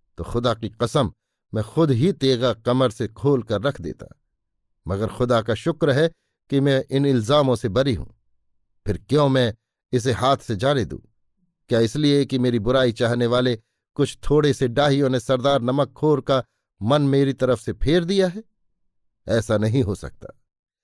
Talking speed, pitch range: 175 wpm, 110-140 Hz